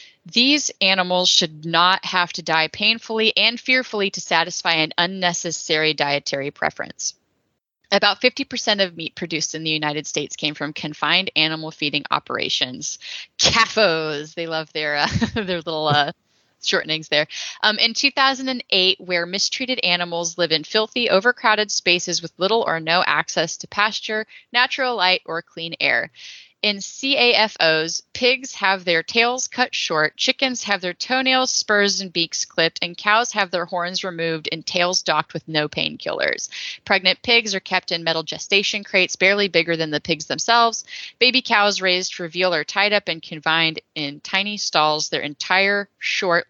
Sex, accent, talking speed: female, American, 155 wpm